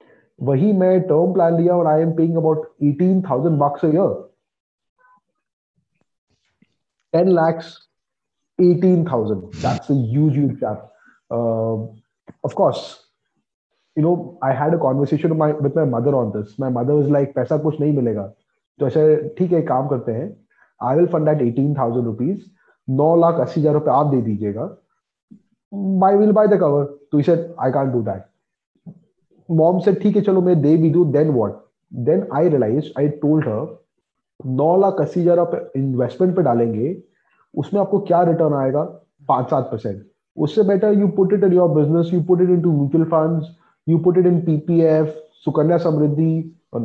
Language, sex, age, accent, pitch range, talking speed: English, male, 30-49, Indian, 135-180 Hz, 130 wpm